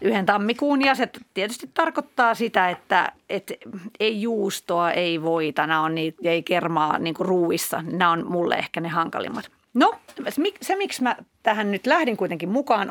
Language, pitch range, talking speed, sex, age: Finnish, 190-260 Hz, 165 wpm, female, 30-49